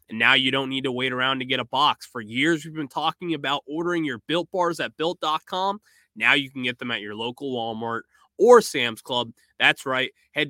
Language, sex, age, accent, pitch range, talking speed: English, male, 20-39, American, 120-185 Hz, 225 wpm